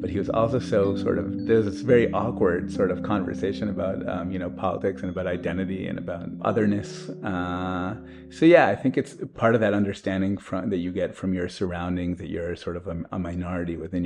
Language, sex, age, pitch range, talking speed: English, male, 30-49, 85-100 Hz, 215 wpm